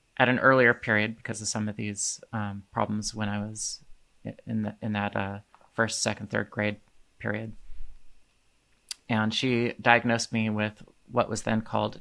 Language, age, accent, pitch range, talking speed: English, 30-49, American, 105-120 Hz, 160 wpm